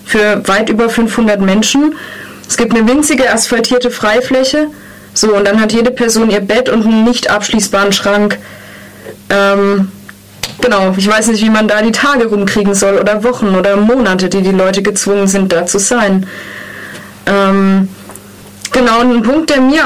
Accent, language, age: German, German, 20-39